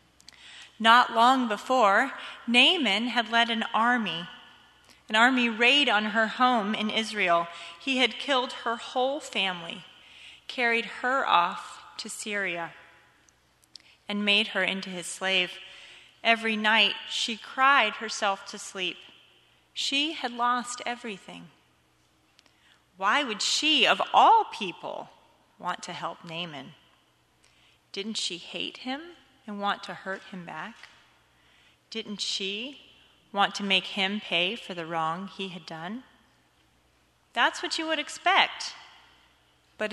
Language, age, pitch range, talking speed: English, 30-49, 185-245 Hz, 125 wpm